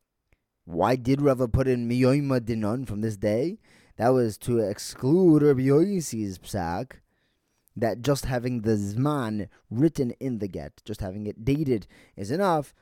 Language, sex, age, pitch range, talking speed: English, male, 20-39, 100-130 Hz, 125 wpm